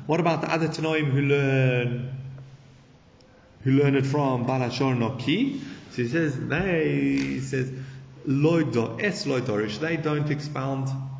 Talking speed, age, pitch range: 140 wpm, 30-49, 120-155 Hz